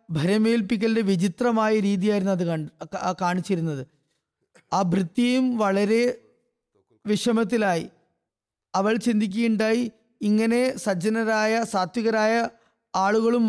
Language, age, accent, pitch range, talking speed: Malayalam, 20-39, native, 180-220 Hz, 65 wpm